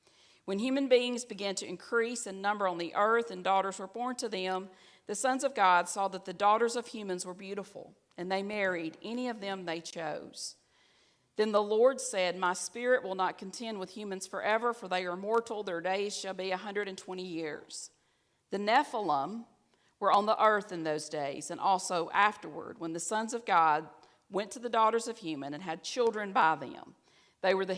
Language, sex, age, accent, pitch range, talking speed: English, female, 40-59, American, 170-215 Hz, 195 wpm